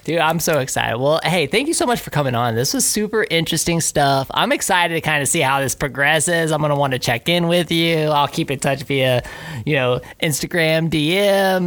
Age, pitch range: 20-39, 125-165 Hz